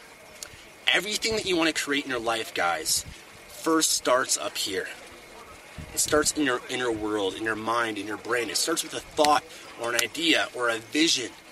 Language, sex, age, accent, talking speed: English, male, 30-49, American, 195 wpm